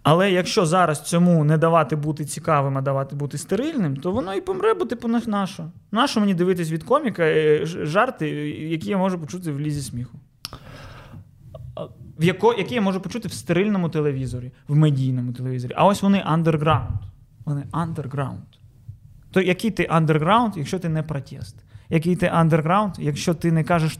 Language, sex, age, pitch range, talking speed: Ukrainian, male, 20-39, 135-180 Hz, 155 wpm